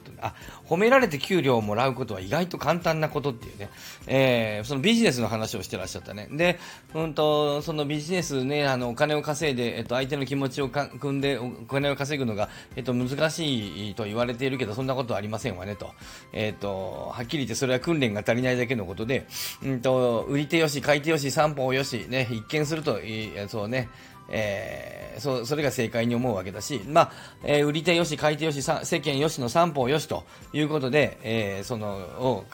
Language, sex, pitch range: Japanese, male, 115-155 Hz